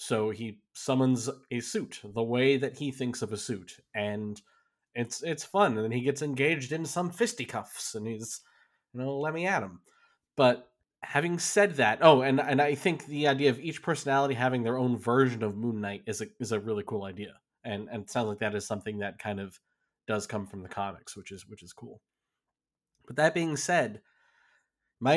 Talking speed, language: 205 wpm, English